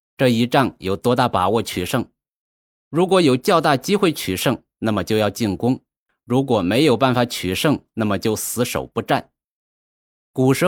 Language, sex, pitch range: Chinese, male, 110-150 Hz